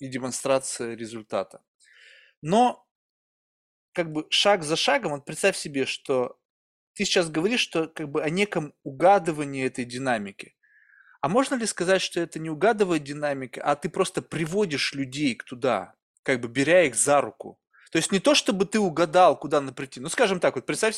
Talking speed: 170 wpm